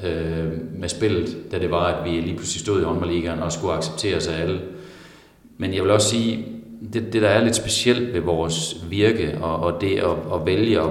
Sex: male